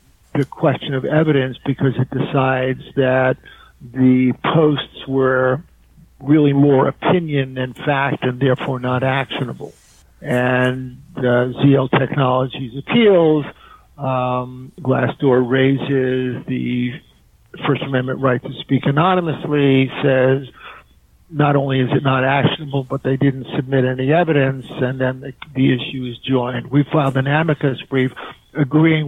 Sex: male